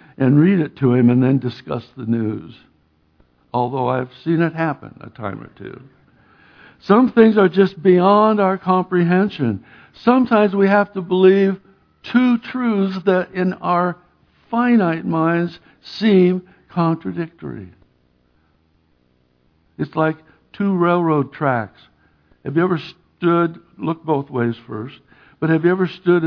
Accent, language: American, English